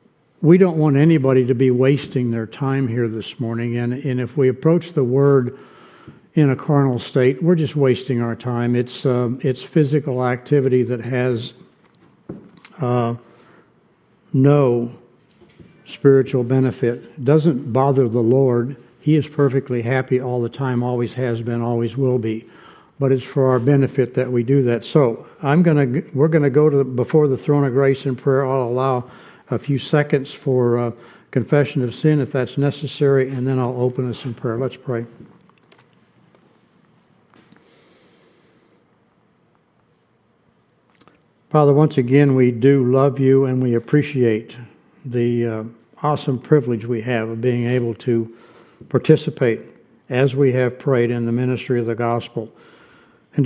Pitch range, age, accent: 120-145 Hz, 60-79, American